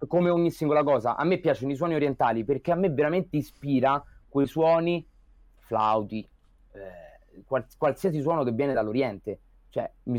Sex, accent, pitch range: male, native, 125-165 Hz